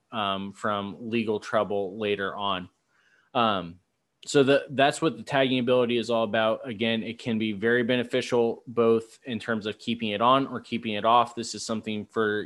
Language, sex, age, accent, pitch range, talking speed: English, male, 20-39, American, 105-120 Hz, 185 wpm